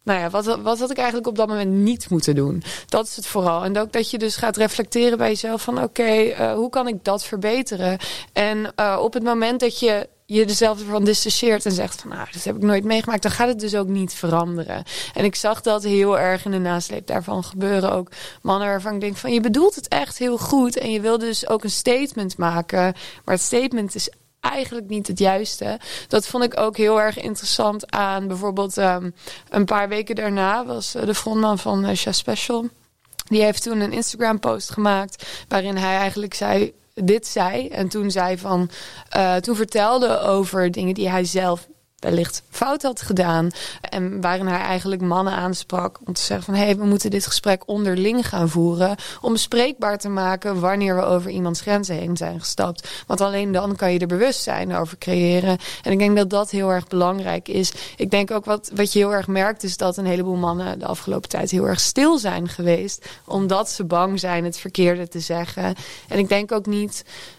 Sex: female